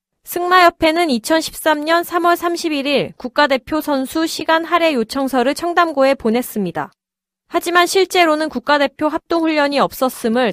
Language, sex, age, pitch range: Korean, female, 20-39, 230-315 Hz